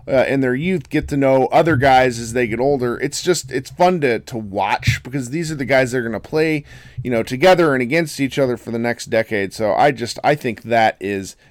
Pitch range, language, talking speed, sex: 105-140 Hz, English, 245 wpm, male